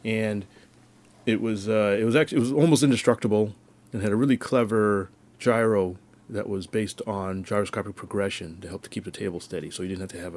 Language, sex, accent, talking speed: English, male, American, 210 wpm